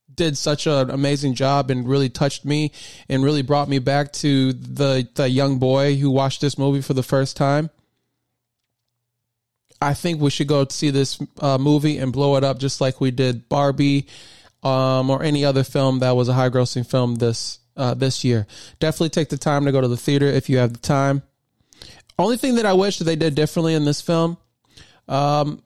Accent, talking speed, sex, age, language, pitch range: American, 205 wpm, male, 20-39, English, 135-160 Hz